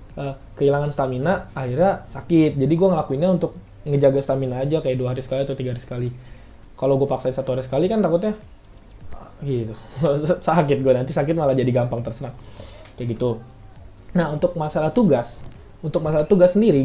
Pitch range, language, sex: 120-155 Hz, Indonesian, male